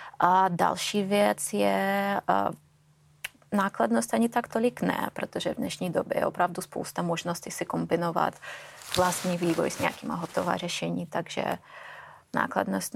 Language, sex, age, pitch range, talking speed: Czech, female, 20-39, 150-195 Hz, 130 wpm